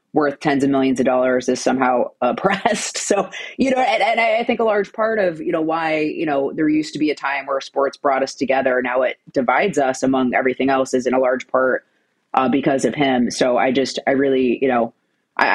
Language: English